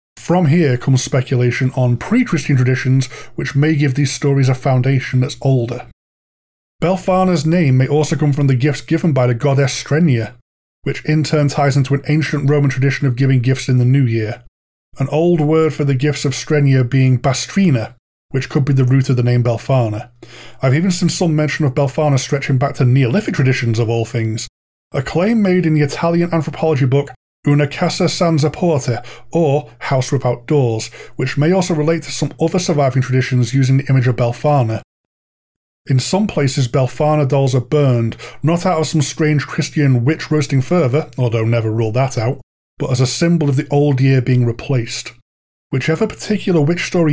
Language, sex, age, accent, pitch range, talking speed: English, male, 20-39, British, 125-155 Hz, 185 wpm